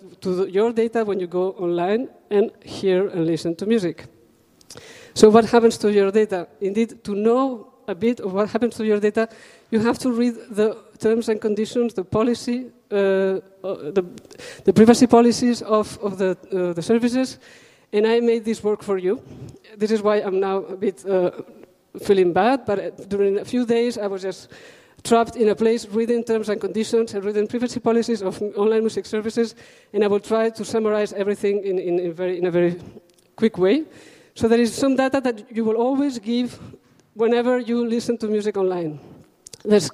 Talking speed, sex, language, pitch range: 185 wpm, female, German, 195-235 Hz